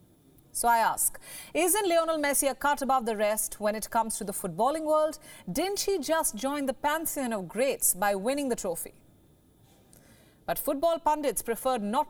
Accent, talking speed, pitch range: Indian, 175 wpm, 215-300 Hz